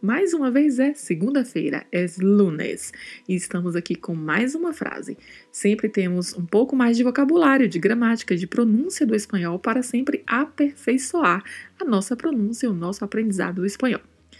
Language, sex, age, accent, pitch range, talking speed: Portuguese, female, 20-39, Brazilian, 180-240 Hz, 165 wpm